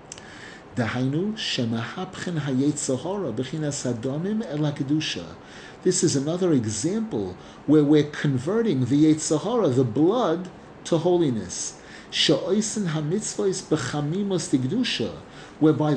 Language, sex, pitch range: English, male, 135-180 Hz